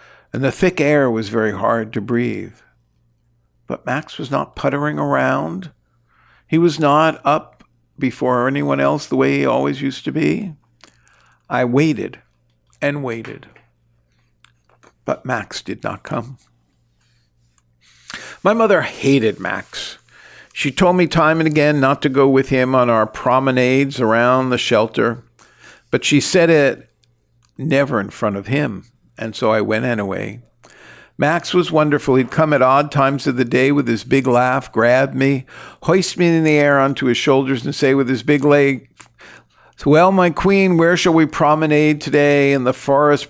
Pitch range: 115-145 Hz